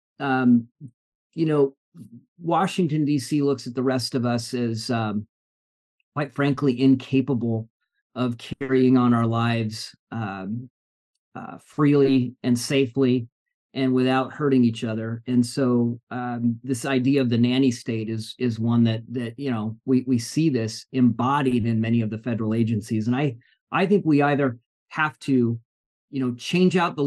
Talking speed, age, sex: 155 wpm, 40-59, male